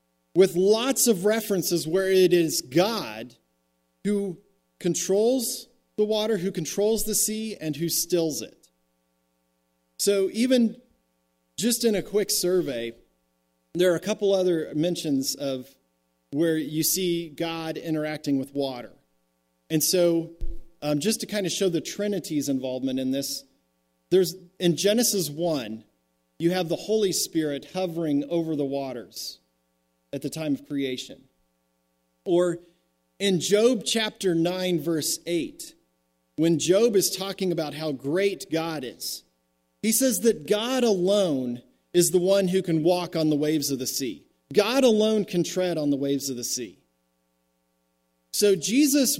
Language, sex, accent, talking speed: English, male, American, 145 wpm